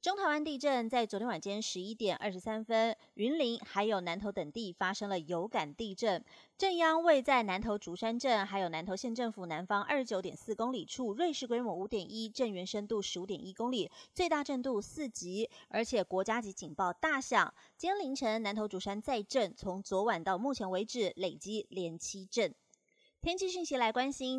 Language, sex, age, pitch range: Chinese, female, 30-49, 195-255 Hz